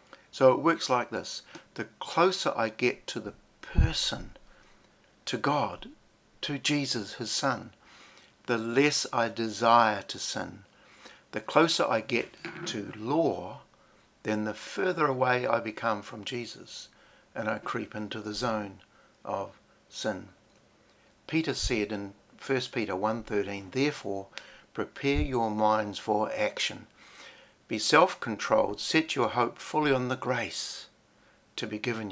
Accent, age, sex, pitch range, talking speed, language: Australian, 60-79, male, 110-135 Hz, 130 wpm, English